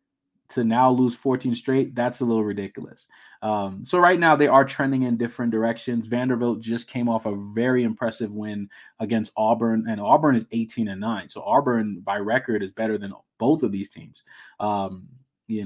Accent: American